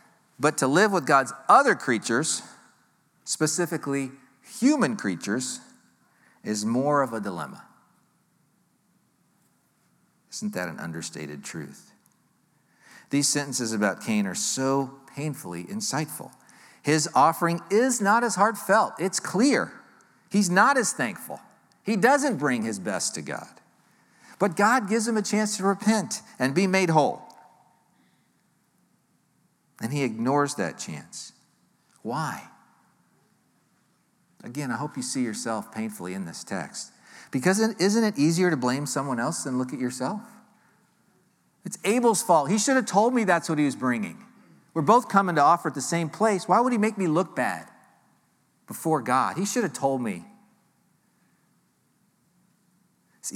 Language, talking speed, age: English, 140 wpm, 50-69